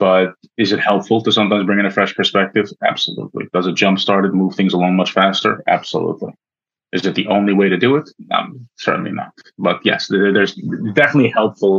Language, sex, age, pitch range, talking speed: English, male, 30-49, 90-105 Hz, 195 wpm